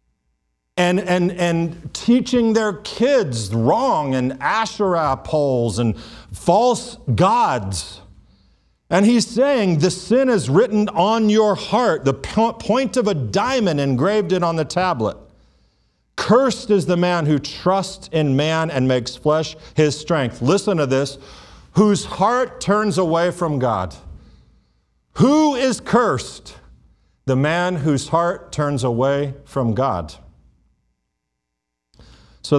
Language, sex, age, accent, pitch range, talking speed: English, male, 50-69, American, 130-195 Hz, 125 wpm